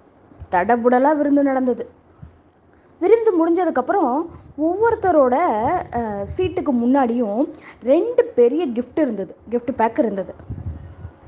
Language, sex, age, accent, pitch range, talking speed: Tamil, female, 20-39, native, 225-315 Hz, 85 wpm